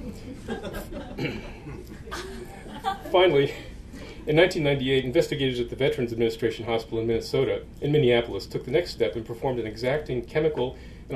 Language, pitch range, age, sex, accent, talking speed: English, 115-155 Hz, 40-59, male, American, 125 wpm